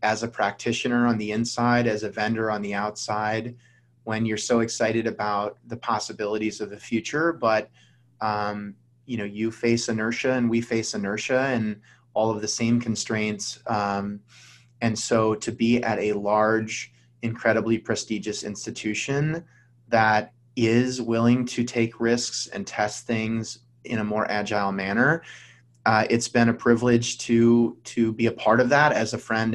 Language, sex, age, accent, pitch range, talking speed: English, male, 20-39, American, 105-120 Hz, 160 wpm